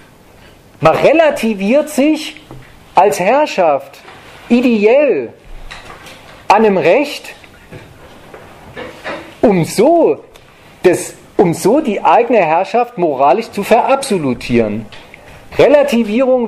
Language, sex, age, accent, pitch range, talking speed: German, male, 40-59, German, 170-245 Hz, 70 wpm